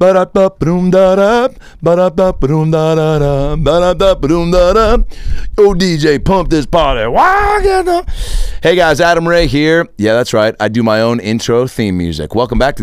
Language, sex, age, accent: English, male, 40-59, American